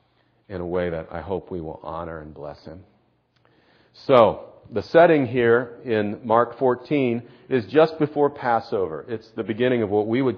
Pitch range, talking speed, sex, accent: 110-130 Hz, 175 wpm, male, American